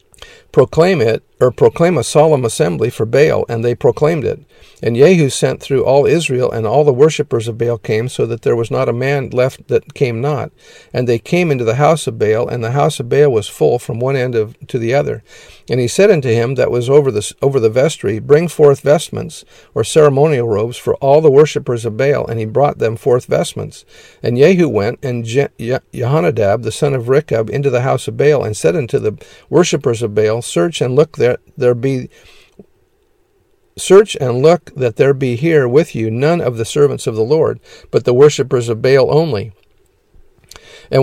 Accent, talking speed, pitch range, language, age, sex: American, 205 wpm, 120-150 Hz, English, 50-69, male